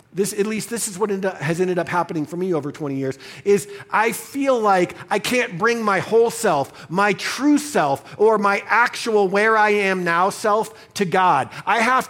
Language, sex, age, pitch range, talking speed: English, male, 50-69, 180-225 Hz, 195 wpm